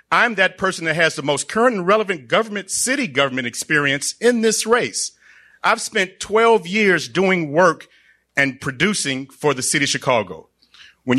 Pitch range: 135-185 Hz